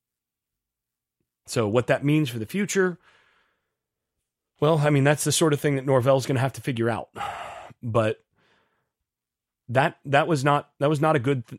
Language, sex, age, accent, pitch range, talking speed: English, male, 30-49, American, 120-160 Hz, 165 wpm